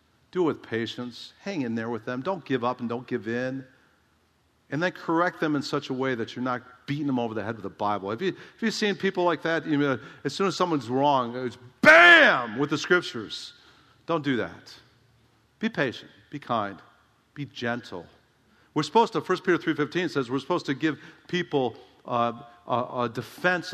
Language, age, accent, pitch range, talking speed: English, 50-69, American, 125-165 Hz, 195 wpm